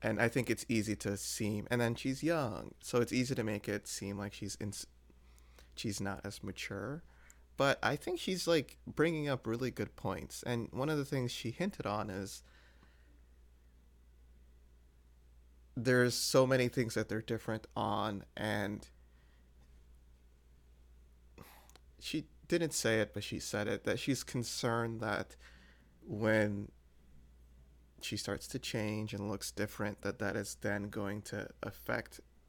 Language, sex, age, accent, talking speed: English, male, 30-49, American, 150 wpm